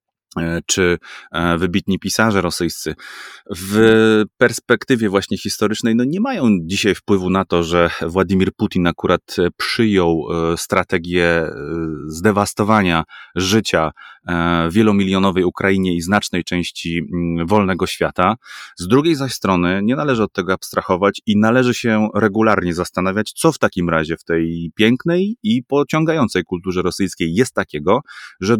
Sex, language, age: male, Polish, 30-49